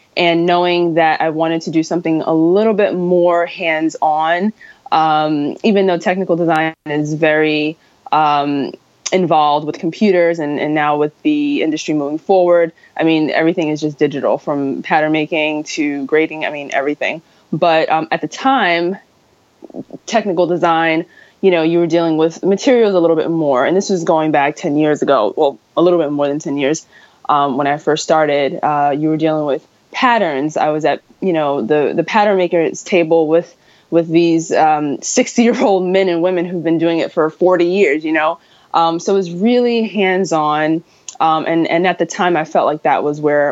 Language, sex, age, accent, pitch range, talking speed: English, female, 20-39, American, 155-180 Hz, 190 wpm